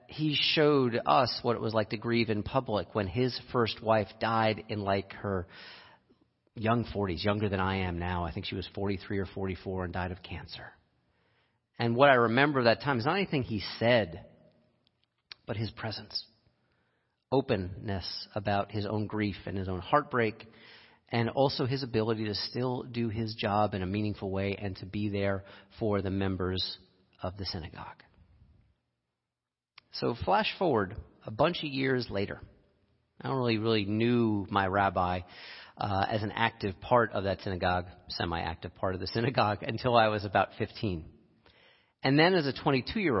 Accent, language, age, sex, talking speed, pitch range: American, English, 40-59, male, 170 wpm, 100-120 Hz